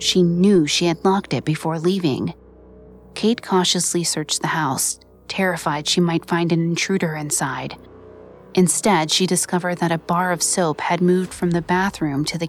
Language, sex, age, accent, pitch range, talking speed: English, female, 30-49, American, 155-195 Hz, 170 wpm